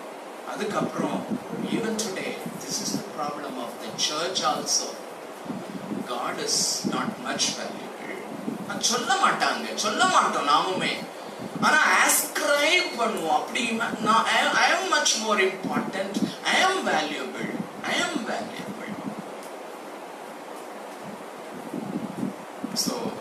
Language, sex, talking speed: Tamil, male, 85 wpm